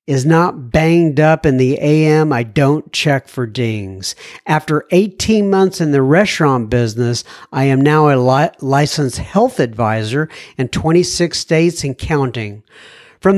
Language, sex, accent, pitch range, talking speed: English, male, American, 125-180 Hz, 145 wpm